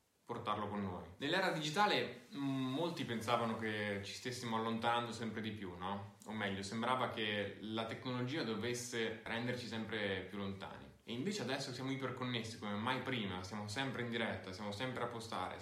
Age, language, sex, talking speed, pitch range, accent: 20-39, Italian, male, 160 wpm, 100-120 Hz, native